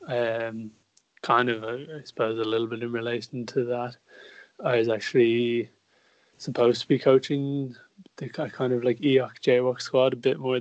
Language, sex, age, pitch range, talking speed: English, male, 20-39, 110-125 Hz, 165 wpm